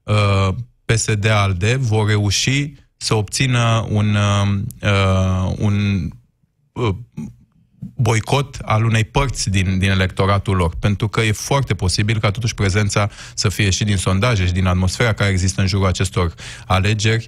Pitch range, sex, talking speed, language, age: 90-115 Hz, male, 140 wpm, Romanian, 20-39